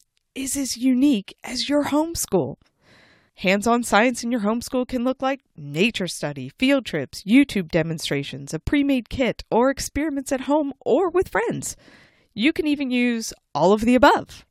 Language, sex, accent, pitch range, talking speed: English, female, American, 190-270 Hz, 155 wpm